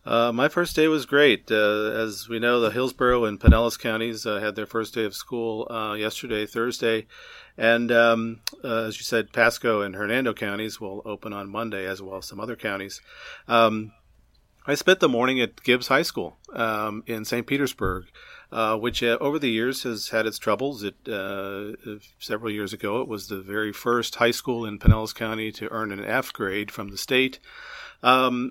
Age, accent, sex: 40-59, American, male